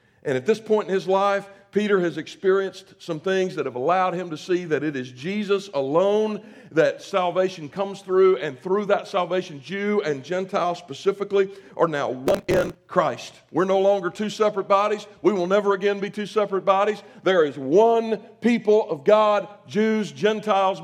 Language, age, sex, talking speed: English, 50-69, male, 180 wpm